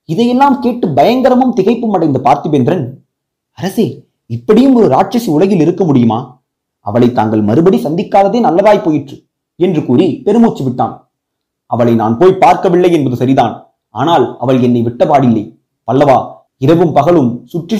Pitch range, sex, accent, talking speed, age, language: 135-205 Hz, male, native, 125 wpm, 30-49, Tamil